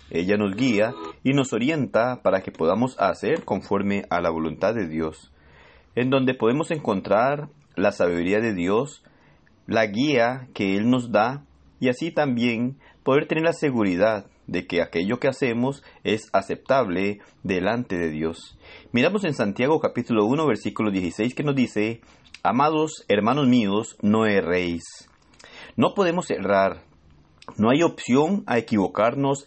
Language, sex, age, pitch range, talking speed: Spanish, male, 40-59, 100-145 Hz, 145 wpm